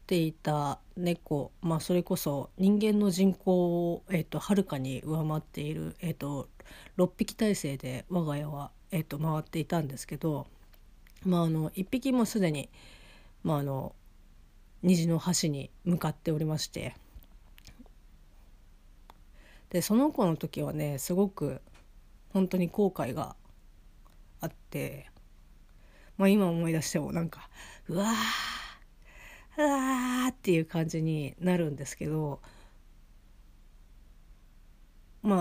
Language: Japanese